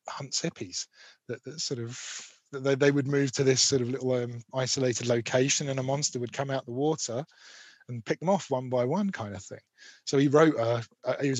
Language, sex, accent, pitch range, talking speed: English, male, British, 120-145 Hz, 230 wpm